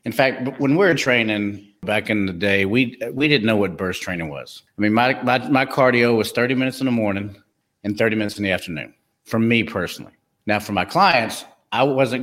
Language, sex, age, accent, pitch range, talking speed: English, male, 50-69, American, 100-130 Hz, 220 wpm